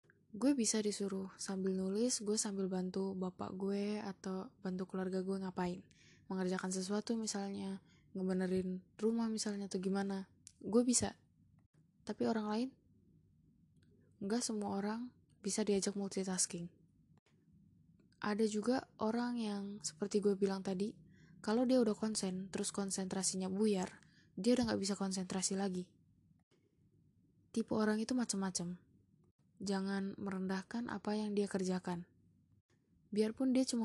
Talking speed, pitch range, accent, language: 120 wpm, 190-210 Hz, native, Indonesian